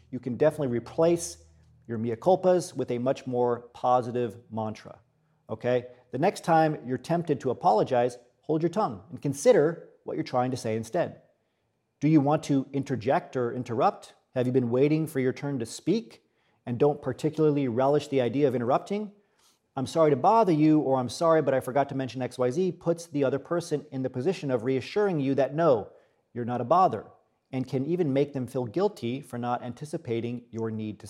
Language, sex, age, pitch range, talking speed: English, male, 40-59, 125-160 Hz, 190 wpm